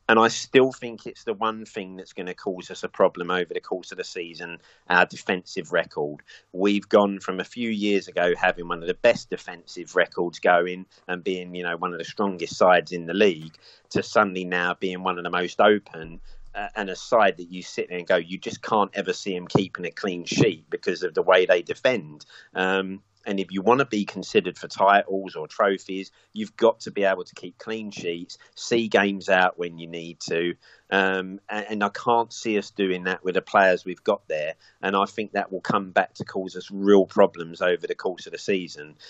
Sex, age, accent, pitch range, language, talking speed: male, 30-49, British, 90-105 Hz, English, 225 wpm